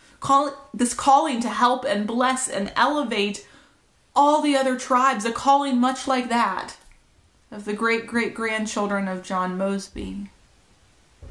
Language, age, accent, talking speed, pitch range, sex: English, 30-49, American, 120 wpm, 190-255 Hz, female